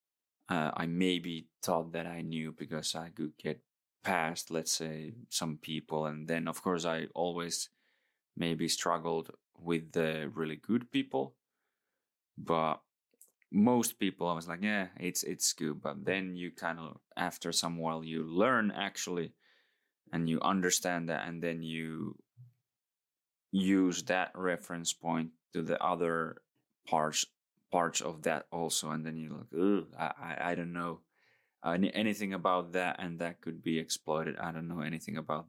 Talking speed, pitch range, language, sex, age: 155 wpm, 80-90 Hz, Finnish, male, 20-39